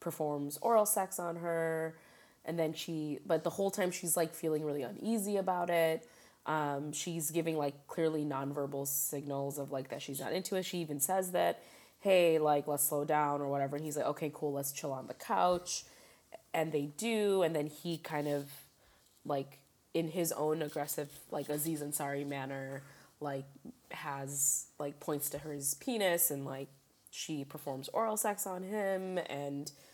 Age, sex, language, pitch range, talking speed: 20-39, female, English, 145-170 Hz, 175 wpm